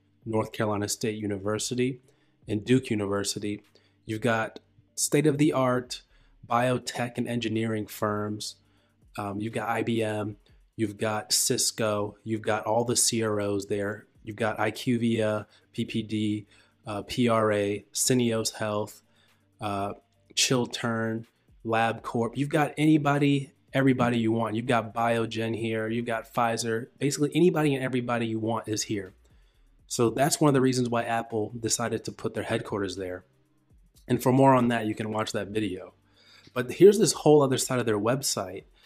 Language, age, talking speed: English, 20-39, 150 wpm